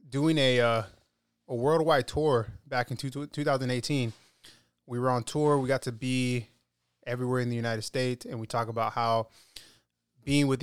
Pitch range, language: 115-135 Hz, English